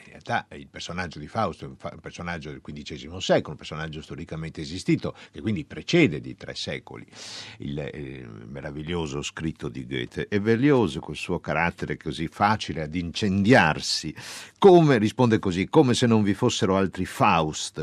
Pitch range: 85-130 Hz